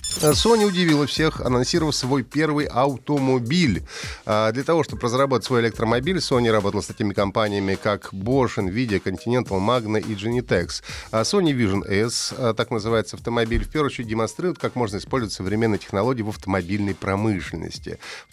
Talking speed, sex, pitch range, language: 145 wpm, male, 95-135 Hz, Russian